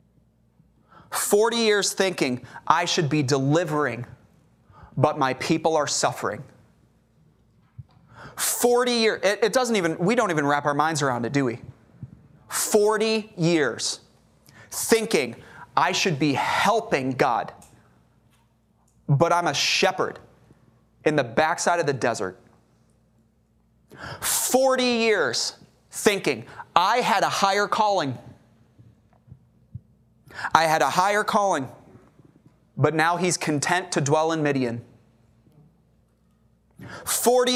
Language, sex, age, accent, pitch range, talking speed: English, male, 30-49, American, 135-180 Hz, 105 wpm